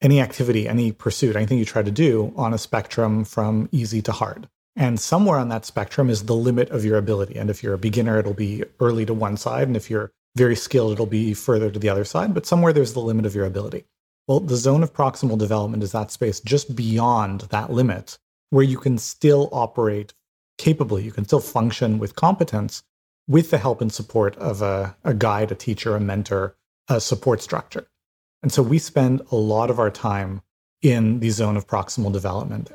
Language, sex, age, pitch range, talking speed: English, male, 30-49, 105-130 Hz, 210 wpm